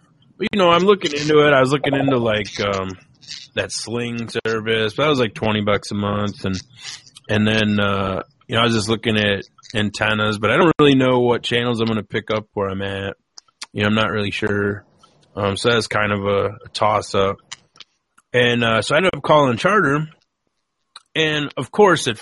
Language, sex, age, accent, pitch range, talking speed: English, male, 20-39, American, 110-150 Hz, 205 wpm